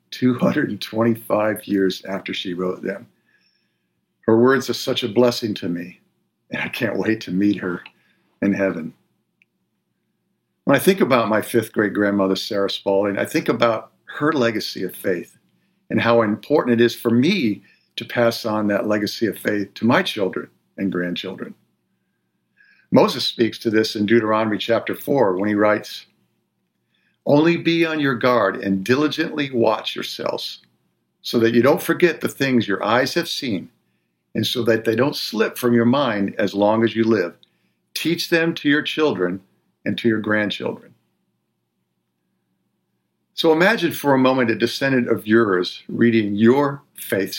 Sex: male